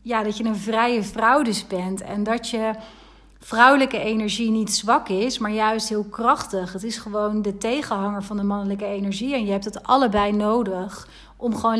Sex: female